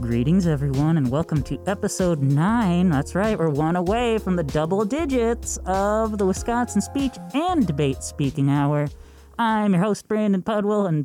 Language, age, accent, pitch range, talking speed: English, 20-39, American, 145-205 Hz, 165 wpm